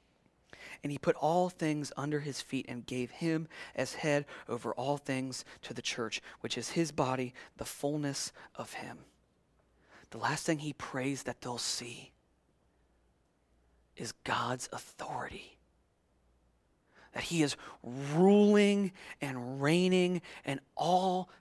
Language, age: English, 30-49